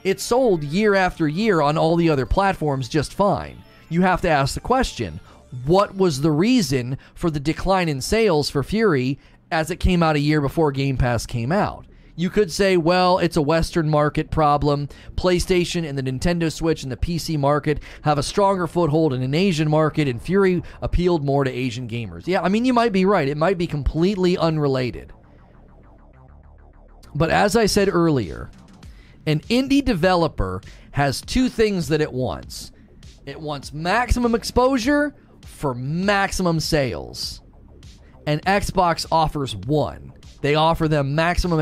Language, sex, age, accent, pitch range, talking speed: English, male, 30-49, American, 140-185 Hz, 165 wpm